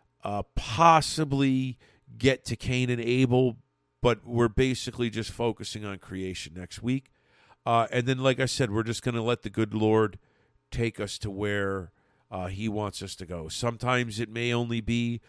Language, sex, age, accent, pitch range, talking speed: English, male, 50-69, American, 105-125 Hz, 175 wpm